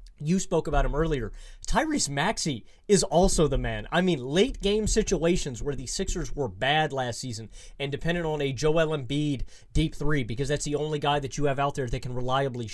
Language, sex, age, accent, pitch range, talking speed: English, male, 30-49, American, 135-180 Hz, 205 wpm